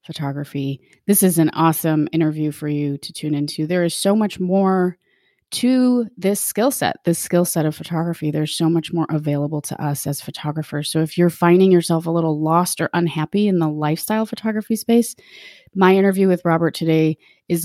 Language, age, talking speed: English, 30-49, 185 wpm